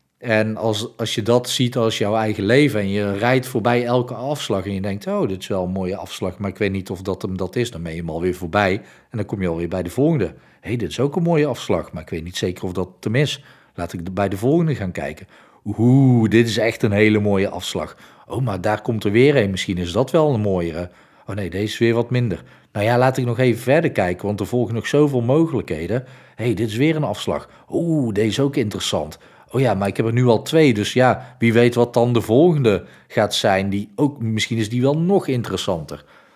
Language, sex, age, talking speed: Dutch, male, 40-59, 255 wpm